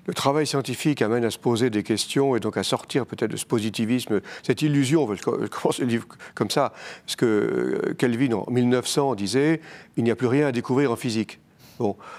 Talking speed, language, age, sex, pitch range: 200 wpm, French, 50-69, male, 120-160 Hz